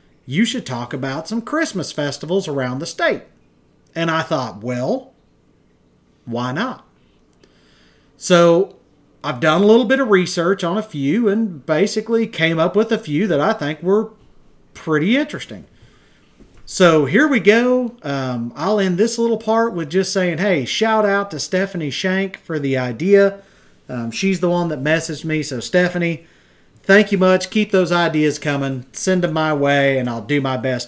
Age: 40-59